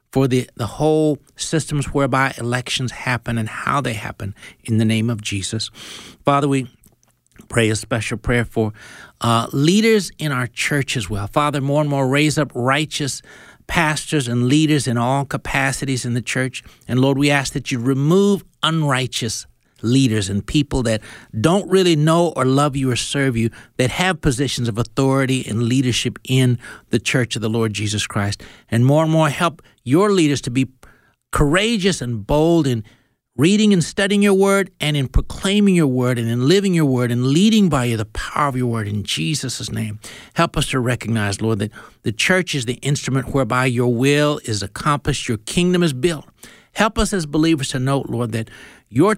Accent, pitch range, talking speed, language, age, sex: American, 120-150 Hz, 185 wpm, English, 60-79, male